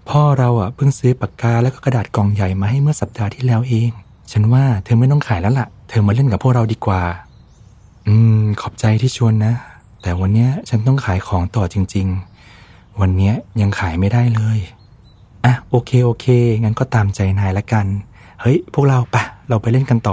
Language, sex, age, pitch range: Thai, male, 20-39, 95-120 Hz